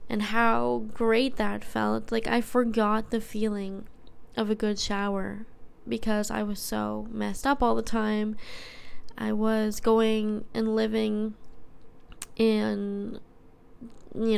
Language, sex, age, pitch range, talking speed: English, female, 10-29, 205-235 Hz, 125 wpm